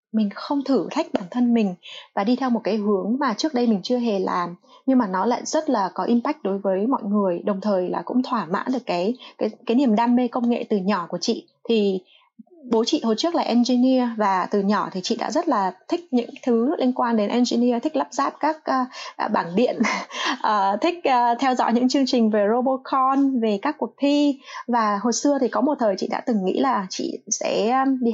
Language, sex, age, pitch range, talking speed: Vietnamese, female, 20-39, 200-260 Hz, 230 wpm